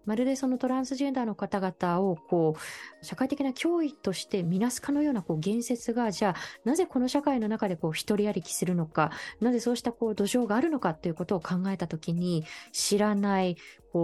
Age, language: 20-39, Japanese